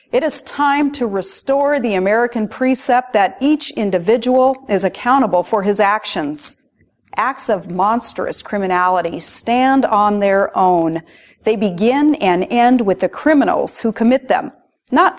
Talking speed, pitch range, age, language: 140 wpm, 190-255 Hz, 40-59, English